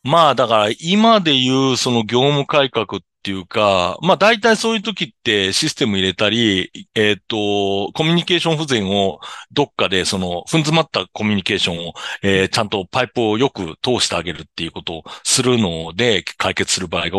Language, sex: Japanese, male